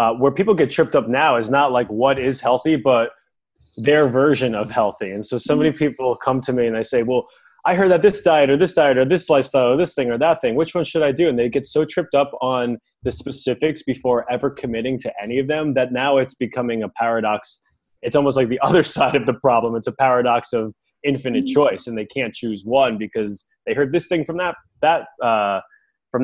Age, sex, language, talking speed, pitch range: 20-39, male, English, 235 wpm, 105-140 Hz